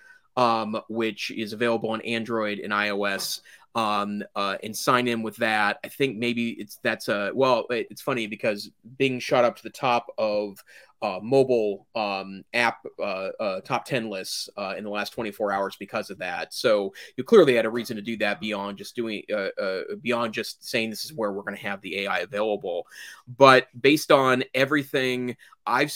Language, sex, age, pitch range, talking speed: English, male, 30-49, 105-130 Hz, 190 wpm